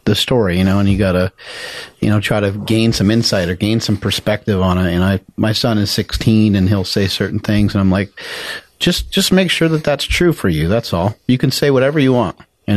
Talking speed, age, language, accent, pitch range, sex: 250 wpm, 30-49, English, American, 100-115 Hz, male